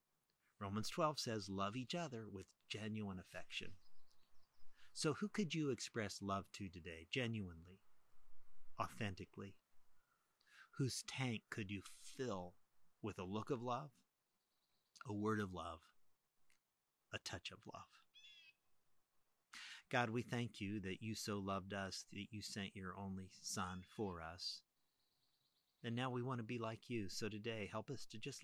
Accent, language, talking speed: American, English, 145 wpm